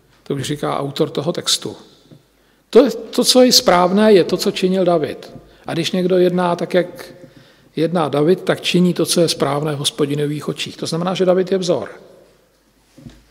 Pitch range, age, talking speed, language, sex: 160-195 Hz, 50-69, 170 wpm, Slovak, male